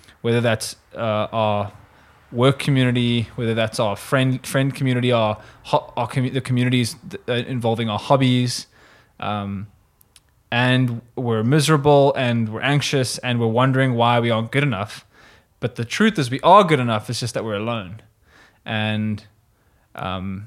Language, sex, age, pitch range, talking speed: English, male, 20-39, 110-135 Hz, 150 wpm